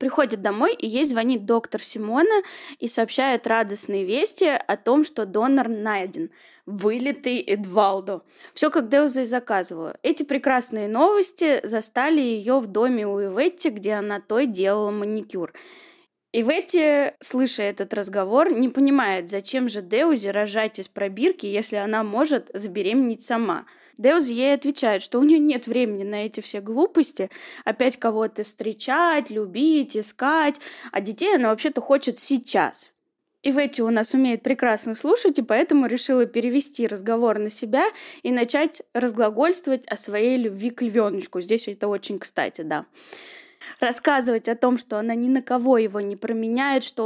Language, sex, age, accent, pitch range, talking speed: Russian, female, 20-39, native, 215-280 Hz, 150 wpm